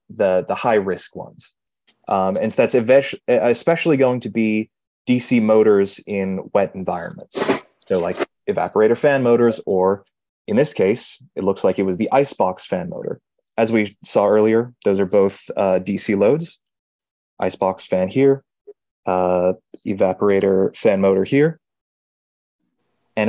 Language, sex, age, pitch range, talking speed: English, male, 20-39, 95-135 Hz, 145 wpm